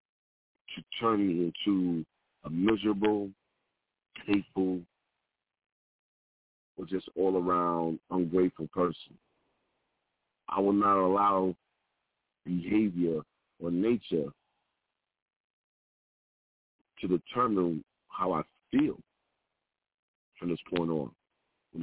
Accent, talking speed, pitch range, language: American, 80 wpm, 90-105 Hz, English